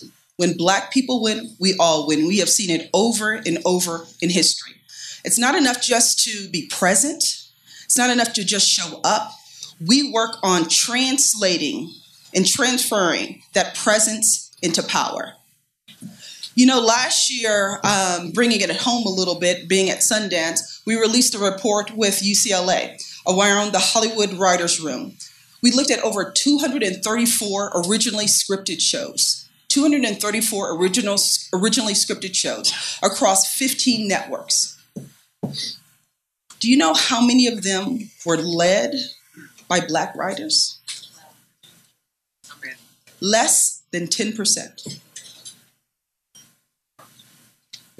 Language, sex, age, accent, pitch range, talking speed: English, female, 30-49, American, 185-240 Hz, 125 wpm